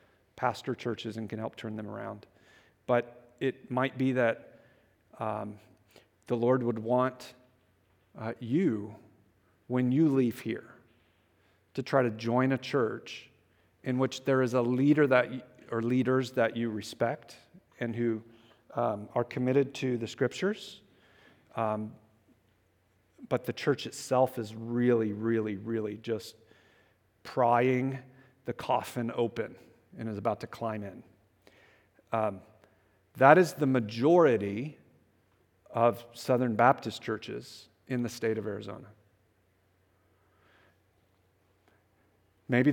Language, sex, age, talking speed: English, male, 40-59, 120 wpm